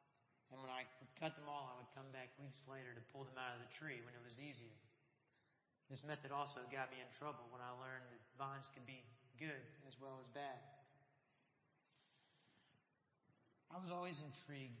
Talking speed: 185 wpm